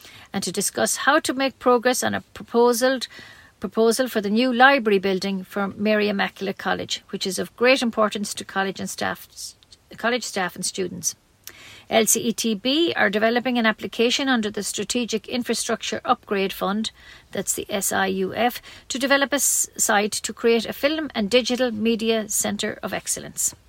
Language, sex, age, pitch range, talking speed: English, female, 50-69, 210-260 Hz, 155 wpm